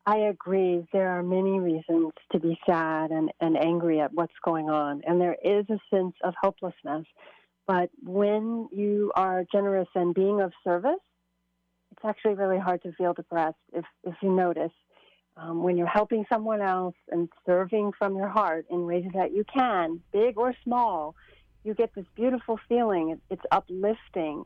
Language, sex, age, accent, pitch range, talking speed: English, female, 40-59, American, 175-215 Hz, 170 wpm